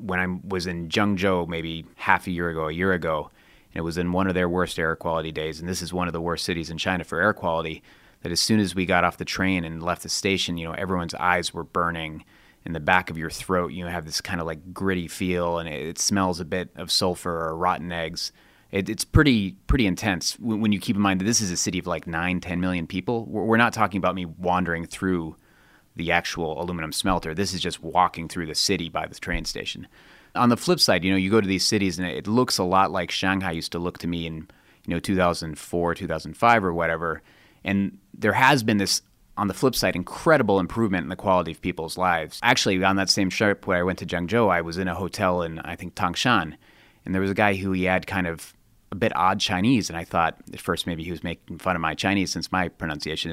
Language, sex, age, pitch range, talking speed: English, male, 30-49, 85-95 Hz, 250 wpm